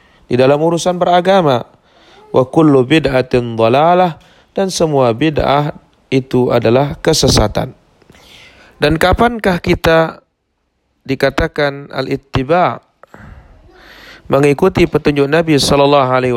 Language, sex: Indonesian, male